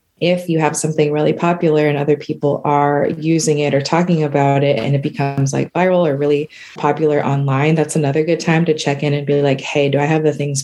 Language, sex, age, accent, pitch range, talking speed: English, female, 20-39, American, 145-160 Hz, 230 wpm